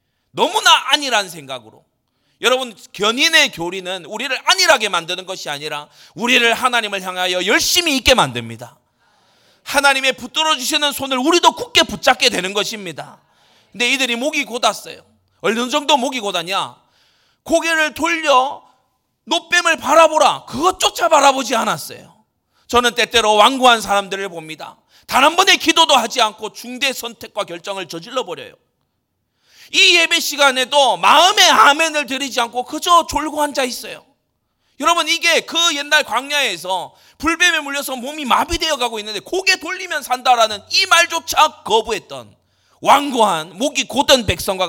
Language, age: Korean, 30-49